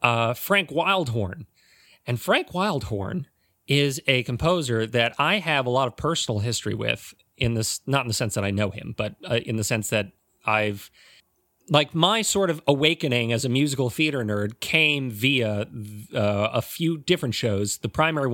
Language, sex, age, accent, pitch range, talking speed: English, male, 30-49, American, 115-150 Hz, 175 wpm